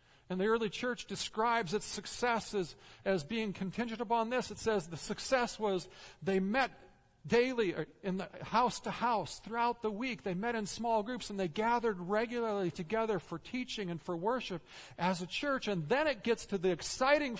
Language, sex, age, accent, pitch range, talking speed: English, male, 50-69, American, 170-235 Hz, 185 wpm